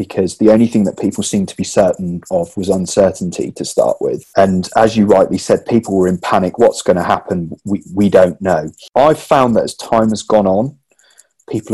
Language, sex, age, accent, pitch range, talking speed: English, male, 30-49, British, 95-115 Hz, 215 wpm